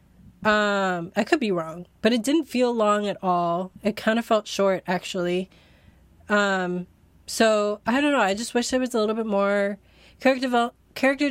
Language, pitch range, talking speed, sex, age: English, 175-215 Hz, 180 wpm, female, 20-39